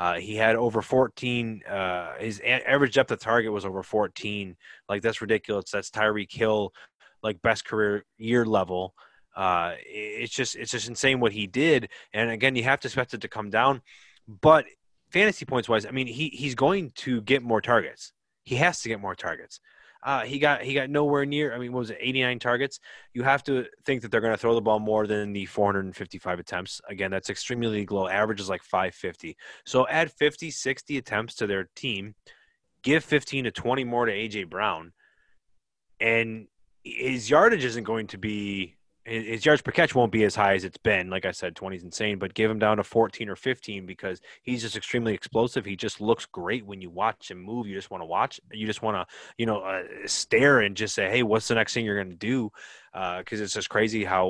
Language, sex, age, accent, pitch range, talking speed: English, male, 20-39, American, 105-130 Hz, 220 wpm